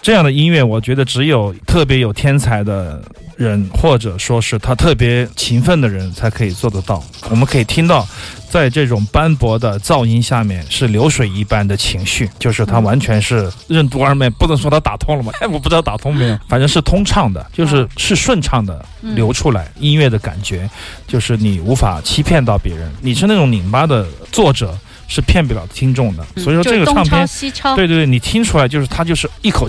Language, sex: Chinese, male